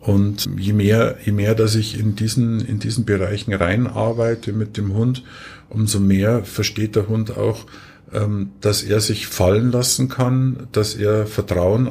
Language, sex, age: German, male, 50-69